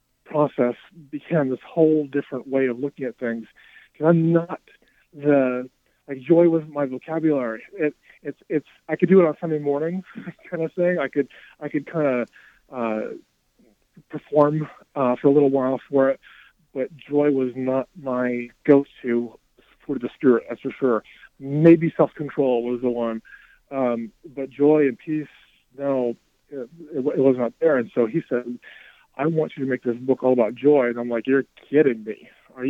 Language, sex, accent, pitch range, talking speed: English, male, American, 125-150 Hz, 180 wpm